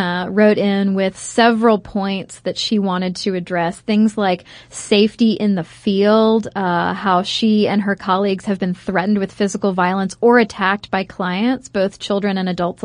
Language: English